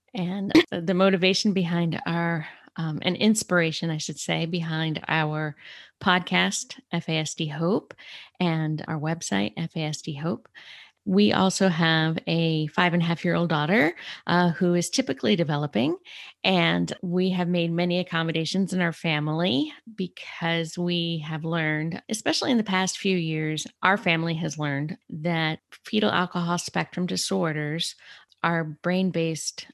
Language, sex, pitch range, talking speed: English, female, 155-180 Hz, 135 wpm